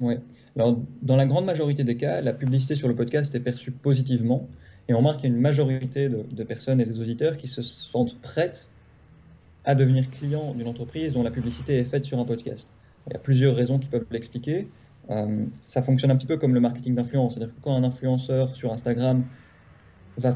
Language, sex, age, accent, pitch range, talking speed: French, male, 20-39, French, 115-140 Hz, 210 wpm